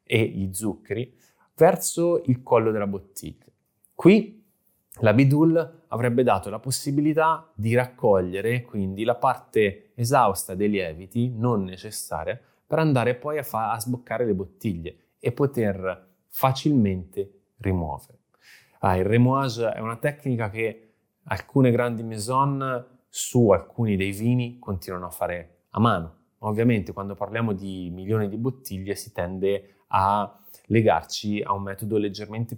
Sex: male